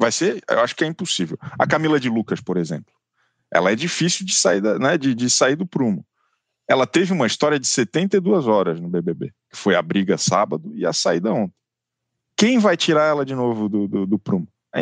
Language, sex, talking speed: Portuguese, male, 220 wpm